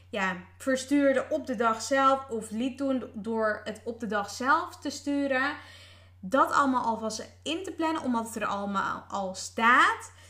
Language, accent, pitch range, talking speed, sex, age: Dutch, Dutch, 200-255 Hz, 170 wpm, female, 20-39